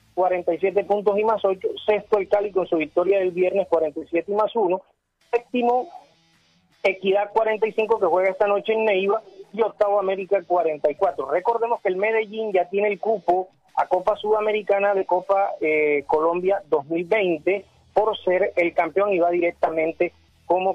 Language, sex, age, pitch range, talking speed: Spanish, male, 30-49, 165-205 Hz, 155 wpm